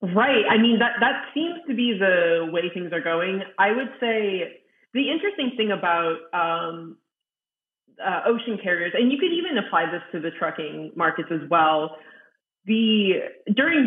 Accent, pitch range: American, 170-220 Hz